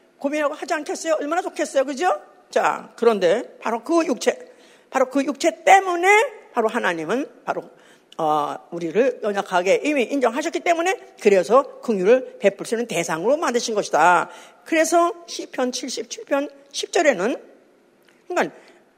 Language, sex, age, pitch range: Korean, female, 50-69, 235-340 Hz